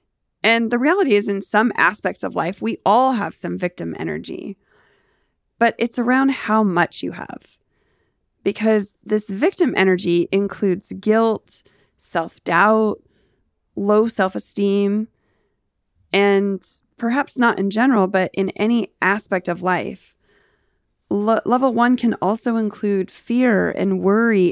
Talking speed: 120 wpm